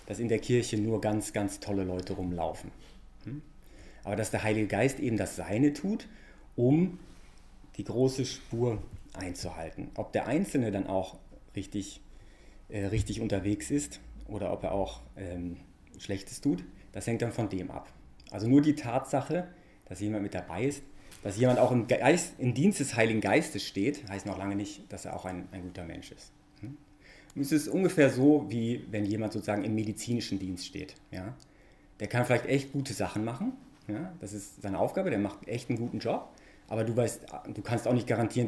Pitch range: 100-125 Hz